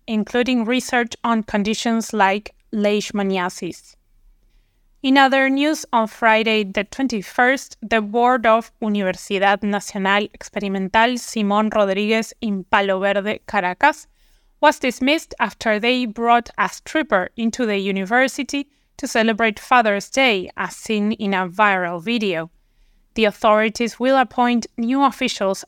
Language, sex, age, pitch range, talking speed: English, female, 20-39, 200-240 Hz, 120 wpm